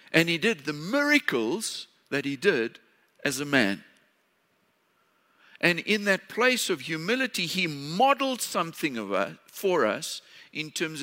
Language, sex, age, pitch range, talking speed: English, male, 60-79, 135-215 Hz, 140 wpm